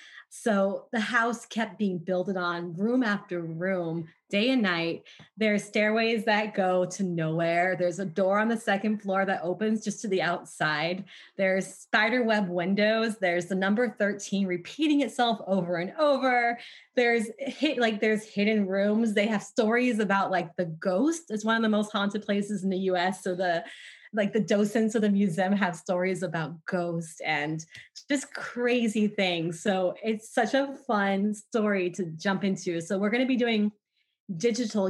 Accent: American